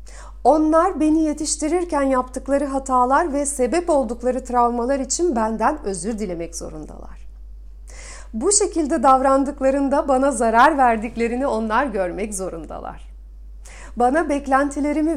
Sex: female